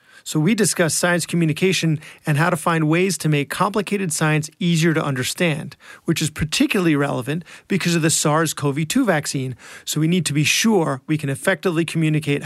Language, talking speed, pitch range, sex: English, 175 wpm, 150-180 Hz, male